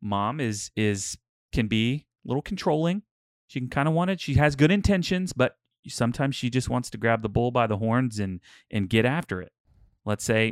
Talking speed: 210 wpm